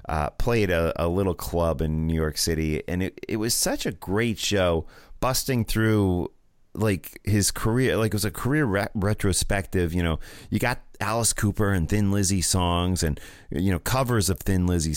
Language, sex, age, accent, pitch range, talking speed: English, male, 30-49, American, 85-115 Hz, 190 wpm